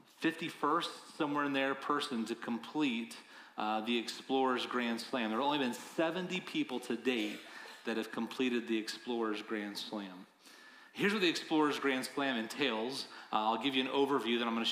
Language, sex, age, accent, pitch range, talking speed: English, male, 30-49, American, 115-150 Hz, 180 wpm